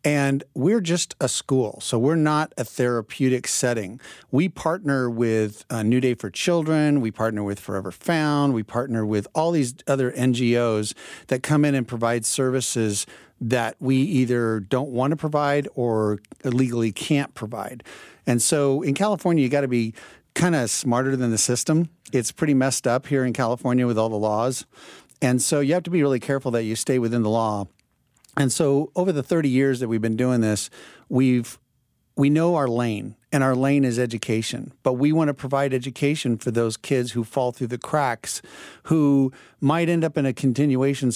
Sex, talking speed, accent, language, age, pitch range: male, 190 wpm, American, English, 50-69, 120-145 Hz